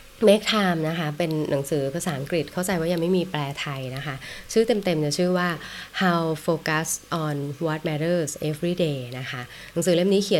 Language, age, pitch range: Thai, 20-39, 145-175 Hz